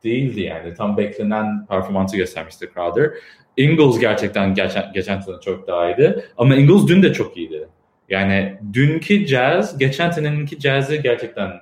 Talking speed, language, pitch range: 140 wpm, English, 90-125 Hz